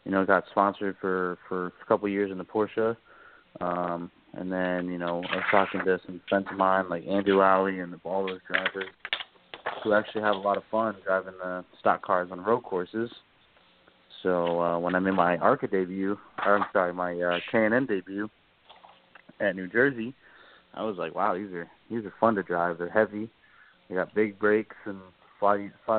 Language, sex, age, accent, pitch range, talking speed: English, male, 20-39, American, 90-105 Hz, 200 wpm